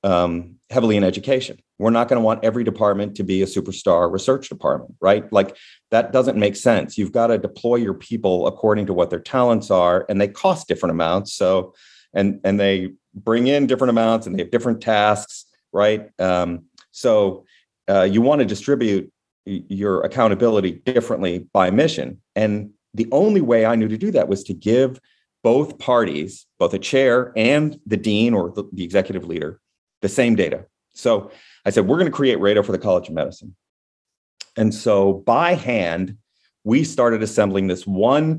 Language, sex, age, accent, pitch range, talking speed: English, male, 40-59, American, 95-120 Hz, 180 wpm